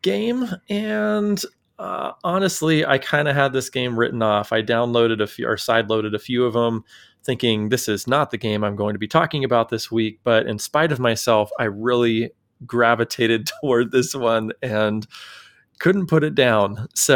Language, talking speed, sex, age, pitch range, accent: English, 190 wpm, male, 30-49, 110-140 Hz, American